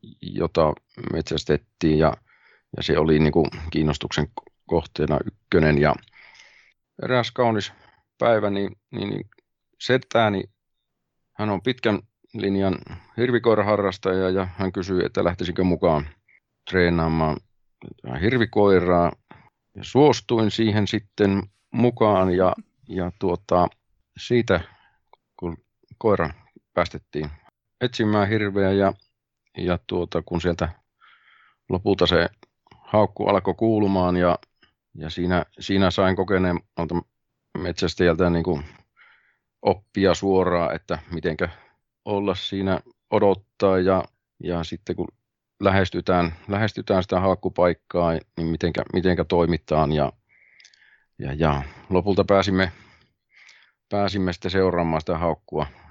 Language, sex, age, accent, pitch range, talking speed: Finnish, male, 40-59, native, 85-100 Hz, 100 wpm